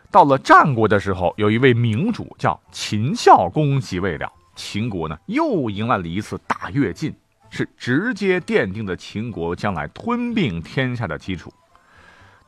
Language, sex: Chinese, male